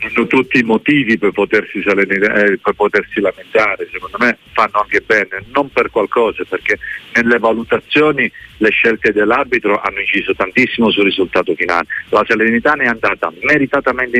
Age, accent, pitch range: 40-59, native, 105-145 Hz